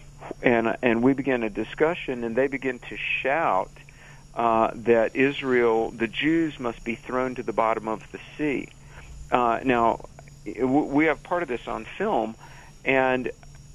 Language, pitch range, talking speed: English, 115-140 Hz, 155 wpm